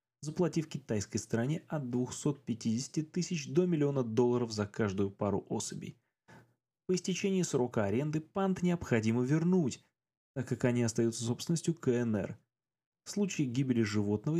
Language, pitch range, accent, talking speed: Russian, 110-155 Hz, native, 125 wpm